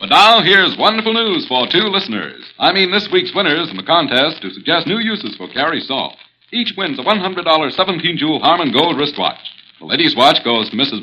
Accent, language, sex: American, English, male